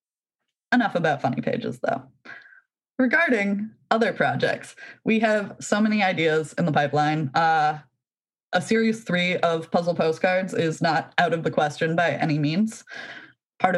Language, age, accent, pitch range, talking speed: English, 20-39, American, 155-190 Hz, 145 wpm